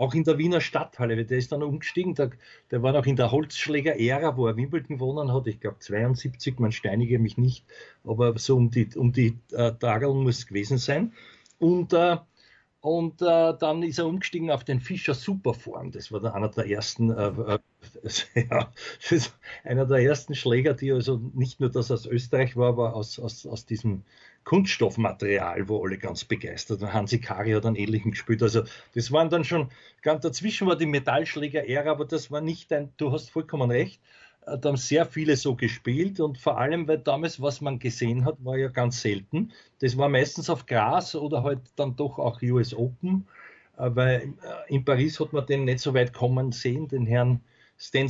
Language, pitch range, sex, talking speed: German, 120-155 Hz, male, 190 wpm